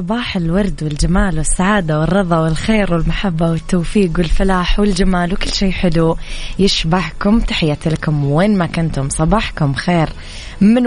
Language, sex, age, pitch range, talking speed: Arabic, female, 20-39, 160-185 Hz, 120 wpm